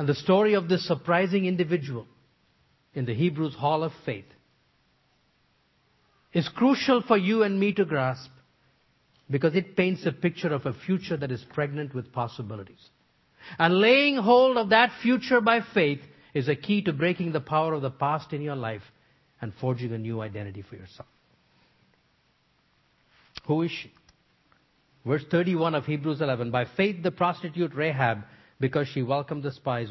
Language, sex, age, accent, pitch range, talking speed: English, male, 50-69, Indian, 125-180 Hz, 160 wpm